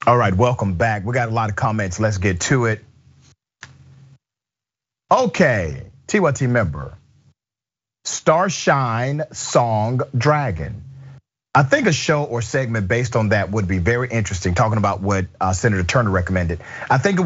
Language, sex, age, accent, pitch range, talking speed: English, male, 40-59, American, 105-145 Hz, 145 wpm